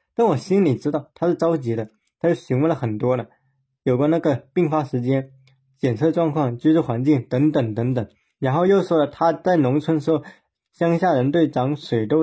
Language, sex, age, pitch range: Chinese, male, 20-39, 120-155 Hz